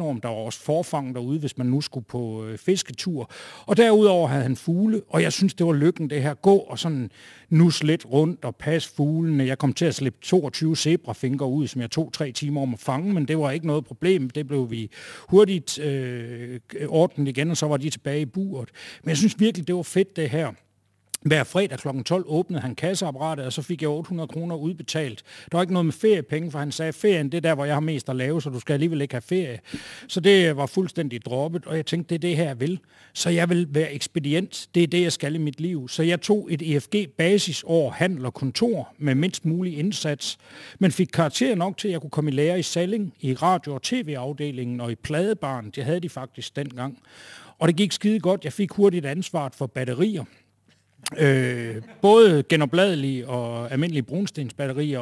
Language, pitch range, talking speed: Danish, 135-175 Hz, 215 wpm